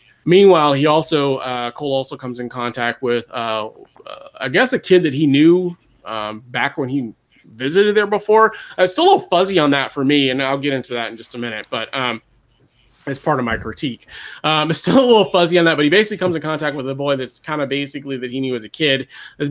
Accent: American